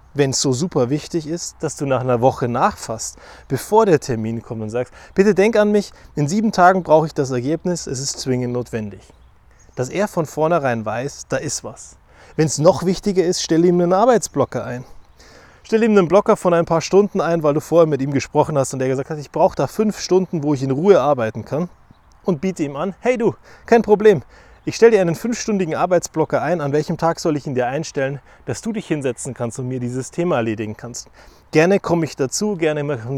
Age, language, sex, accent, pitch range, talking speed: 20-39, German, male, German, 125-175 Hz, 220 wpm